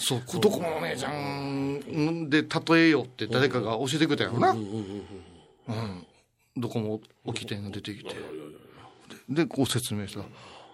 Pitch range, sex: 115-190 Hz, male